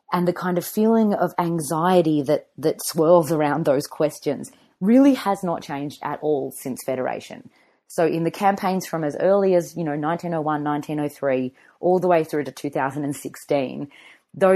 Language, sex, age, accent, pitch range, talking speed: English, female, 30-49, Australian, 150-195 Hz, 160 wpm